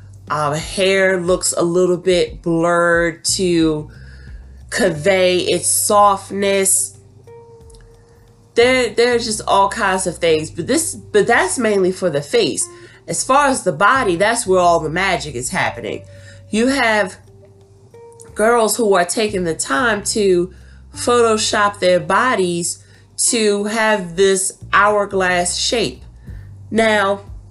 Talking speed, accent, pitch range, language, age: 120 wpm, American, 125-195 Hz, English, 30-49